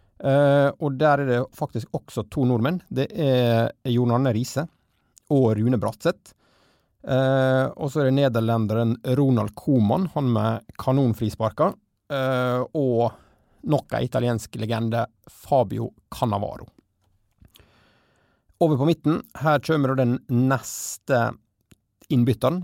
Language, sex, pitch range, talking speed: English, male, 115-140 Hz, 120 wpm